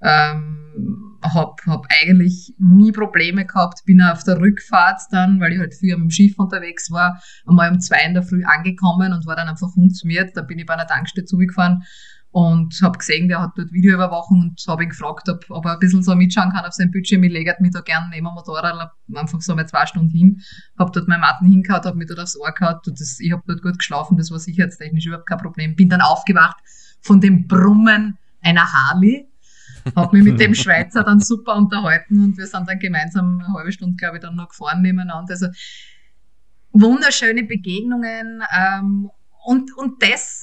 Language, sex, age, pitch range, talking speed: German, female, 20-39, 175-205 Hz, 205 wpm